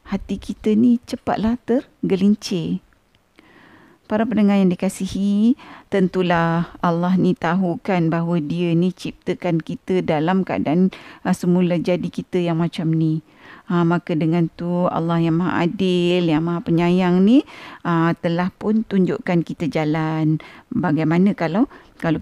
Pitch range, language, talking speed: 170-215 Hz, Malay, 125 wpm